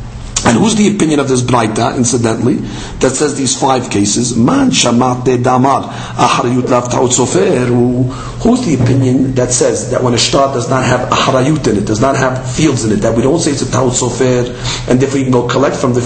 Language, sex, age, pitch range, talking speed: English, male, 50-69, 120-140 Hz, 190 wpm